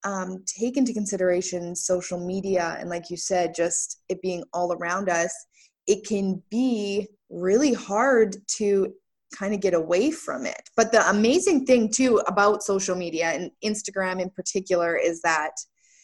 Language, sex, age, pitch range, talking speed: English, female, 20-39, 185-225 Hz, 155 wpm